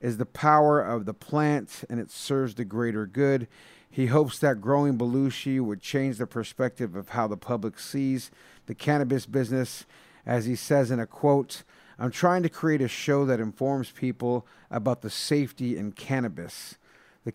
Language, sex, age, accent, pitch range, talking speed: English, male, 50-69, American, 115-145 Hz, 175 wpm